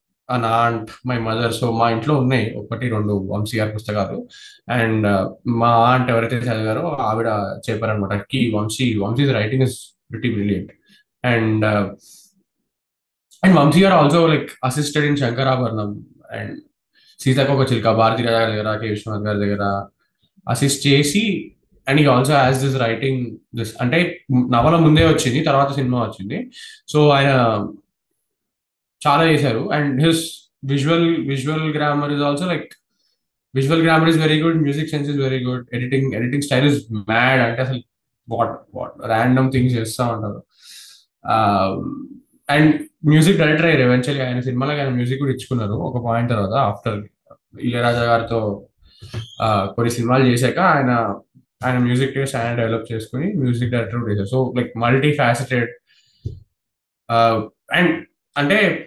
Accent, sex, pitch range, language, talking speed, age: native, male, 115-145 Hz, Telugu, 125 wpm, 20-39